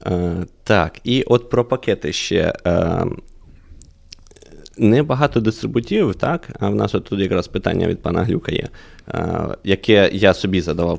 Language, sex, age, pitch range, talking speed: Ukrainian, male, 20-39, 90-105 Hz, 125 wpm